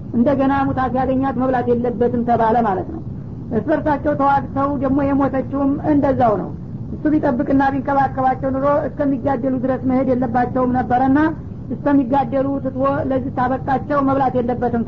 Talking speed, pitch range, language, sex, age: 115 wpm, 255-275 Hz, Amharic, female, 50-69